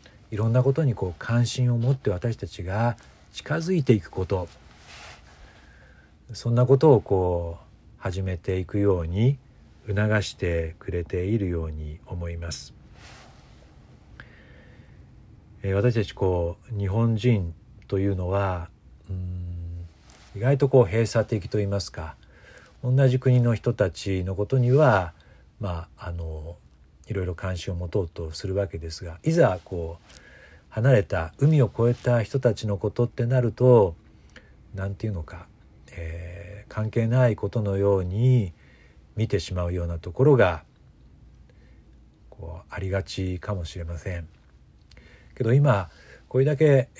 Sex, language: male, Japanese